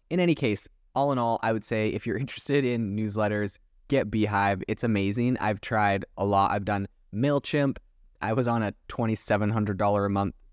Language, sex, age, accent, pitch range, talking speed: English, male, 20-39, American, 95-110 Hz, 195 wpm